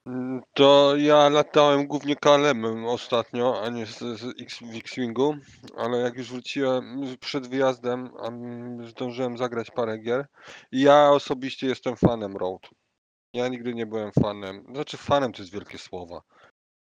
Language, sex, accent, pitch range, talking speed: Polish, male, native, 100-125 Hz, 145 wpm